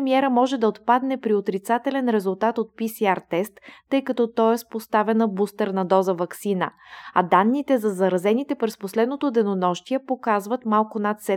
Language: Bulgarian